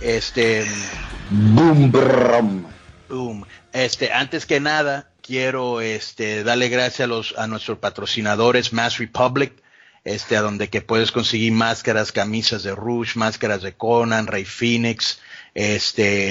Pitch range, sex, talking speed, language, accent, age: 105-120 Hz, male, 125 wpm, English, Mexican, 40-59